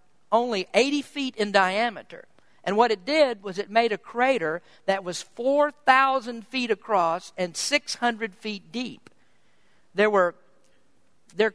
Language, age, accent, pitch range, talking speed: English, 50-69, American, 180-230 Hz, 135 wpm